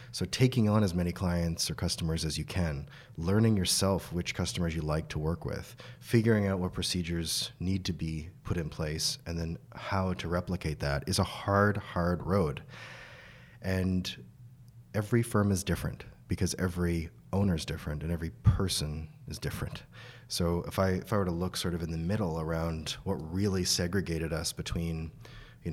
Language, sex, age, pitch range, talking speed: English, male, 30-49, 80-115 Hz, 175 wpm